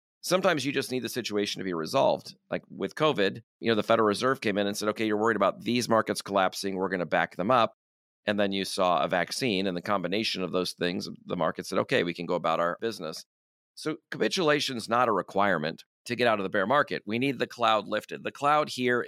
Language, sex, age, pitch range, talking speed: English, male, 40-59, 100-120 Hz, 240 wpm